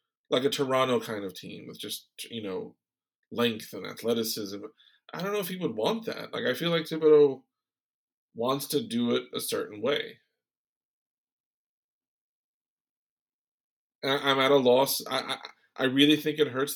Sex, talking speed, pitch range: male, 160 wpm, 115-155 Hz